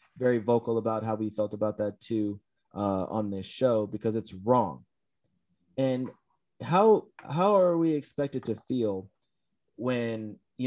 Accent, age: American, 30-49